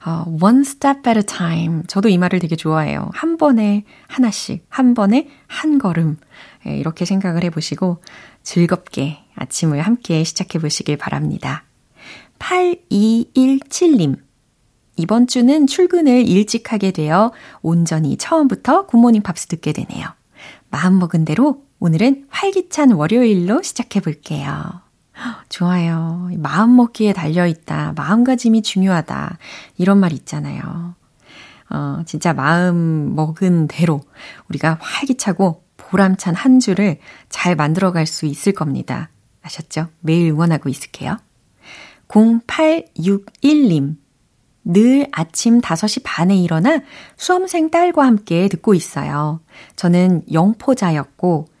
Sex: female